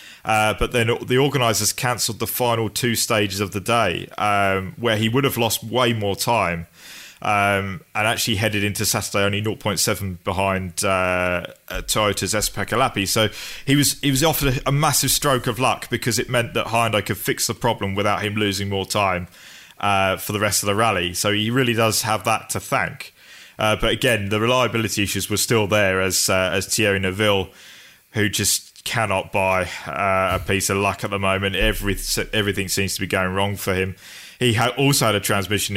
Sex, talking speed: male, 195 wpm